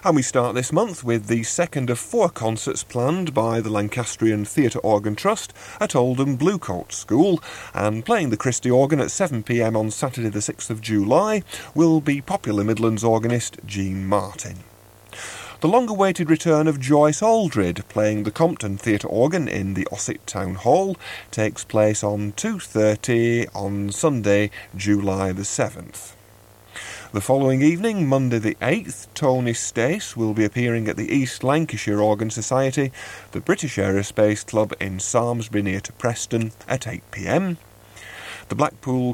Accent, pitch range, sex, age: British, 105-135 Hz, male, 40-59